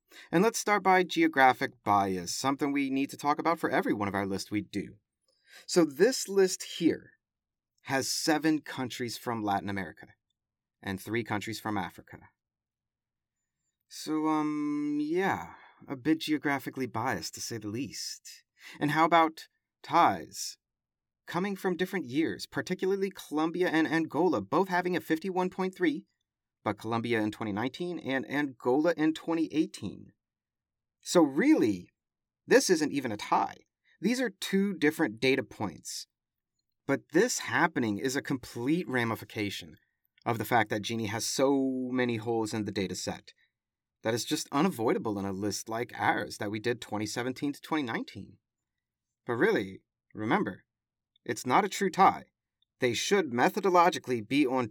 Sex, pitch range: male, 115-175 Hz